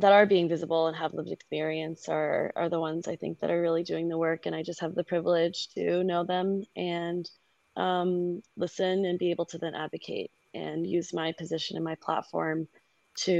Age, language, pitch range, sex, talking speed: 20-39, English, 165-185 Hz, female, 205 wpm